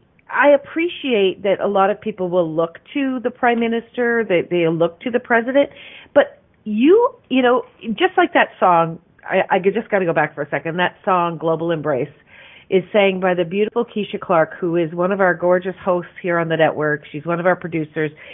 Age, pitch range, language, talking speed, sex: 40-59, 175-230 Hz, English, 210 wpm, female